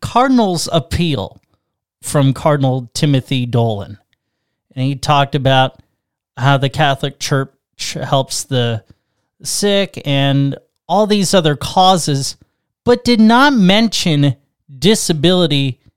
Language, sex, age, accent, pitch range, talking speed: English, male, 30-49, American, 130-165 Hz, 100 wpm